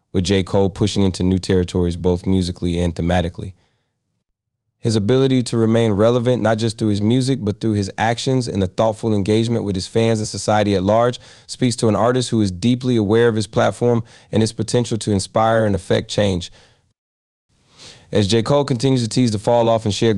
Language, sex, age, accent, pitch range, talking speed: English, male, 30-49, American, 95-115 Hz, 195 wpm